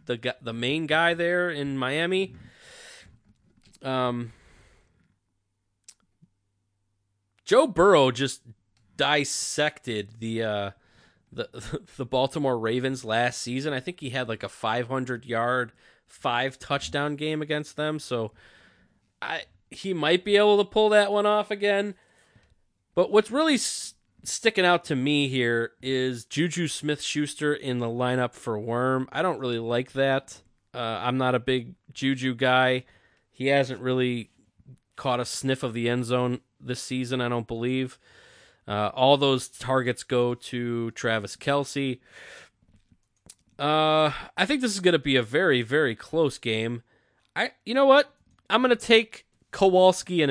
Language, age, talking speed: English, 20-39, 140 wpm